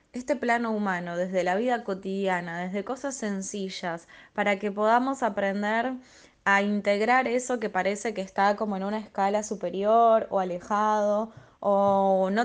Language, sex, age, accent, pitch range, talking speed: Spanish, female, 10-29, Argentinian, 195-230 Hz, 145 wpm